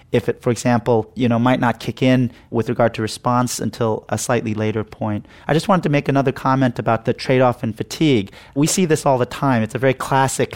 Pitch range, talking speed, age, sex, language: 120-145 Hz, 235 wpm, 30-49, male, English